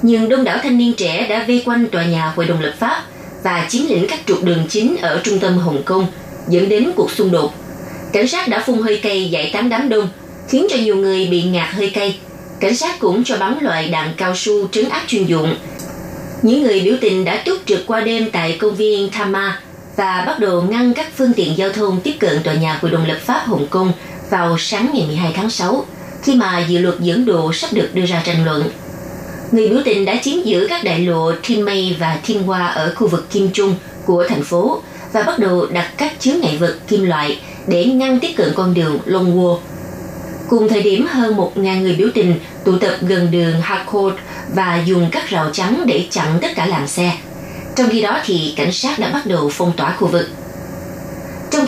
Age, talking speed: 20-39, 220 wpm